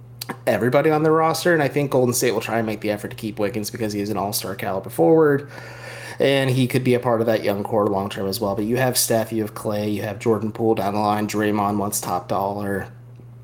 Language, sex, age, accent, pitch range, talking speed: English, male, 30-49, American, 100-125 Hz, 250 wpm